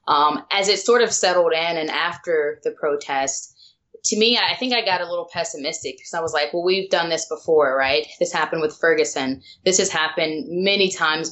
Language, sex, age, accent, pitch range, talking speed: English, female, 20-39, American, 155-210 Hz, 205 wpm